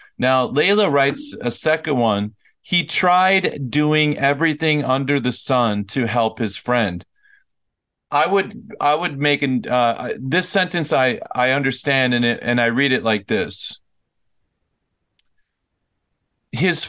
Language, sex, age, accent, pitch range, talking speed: English, male, 40-59, American, 115-150 Hz, 135 wpm